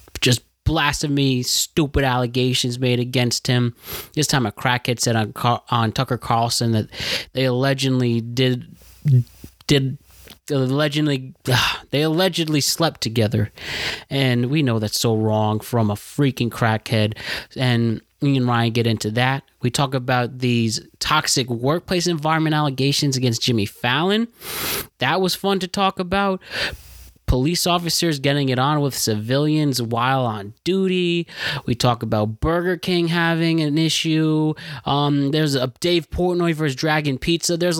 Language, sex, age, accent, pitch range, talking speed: English, male, 20-39, American, 115-155 Hz, 140 wpm